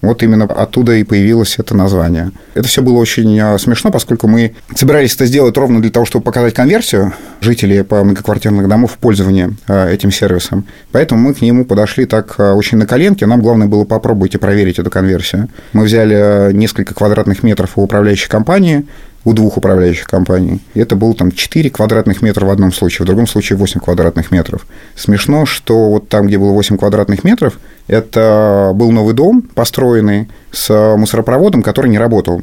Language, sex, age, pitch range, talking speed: Russian, male, 30-49, 100-120 Hz, 170 wpm